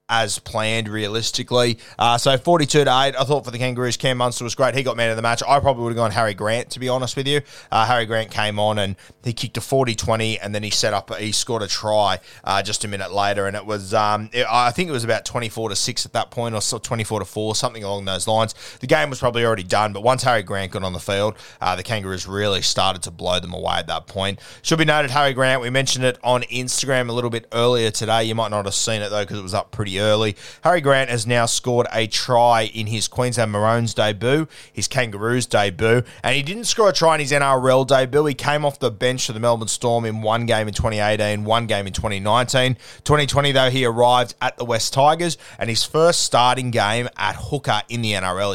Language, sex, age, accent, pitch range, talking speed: English, male, 20-39, Australian, 105-125 Hz, 245 wpm